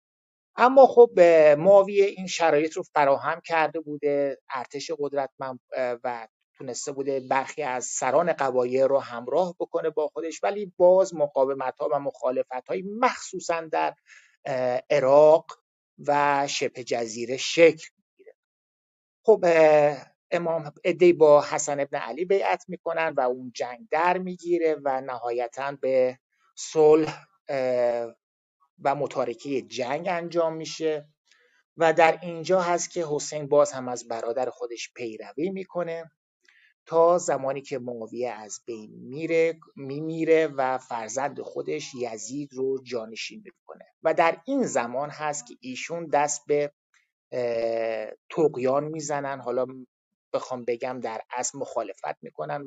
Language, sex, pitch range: Persian, male, 130-170 Hz